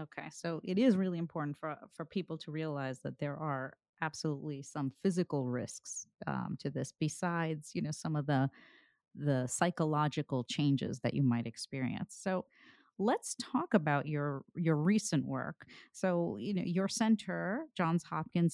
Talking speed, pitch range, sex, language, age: 160 wpm, 145-185 Hz, female, English, 30-49